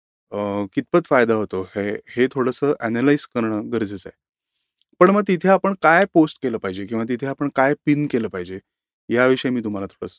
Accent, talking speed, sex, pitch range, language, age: native, 145 wpm, male, 110-140 Hz, Marathi, 30-49